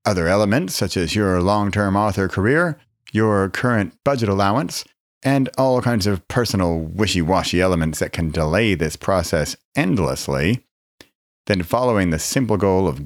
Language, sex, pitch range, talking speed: English, male, 85-110 Hz, 145 wpm